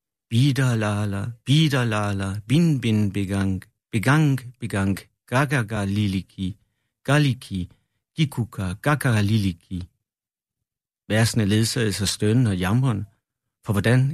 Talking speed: 105 wpm